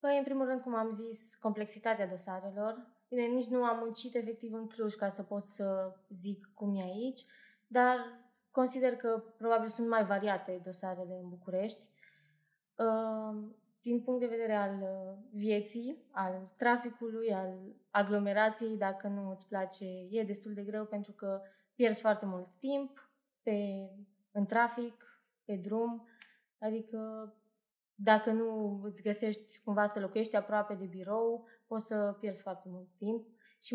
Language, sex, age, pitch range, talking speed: Romanian, female, 20-39, 200-235 Hz, 140 wpm